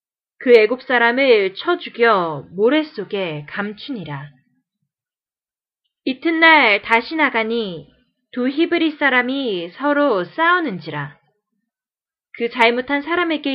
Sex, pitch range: female, 195-290 Hz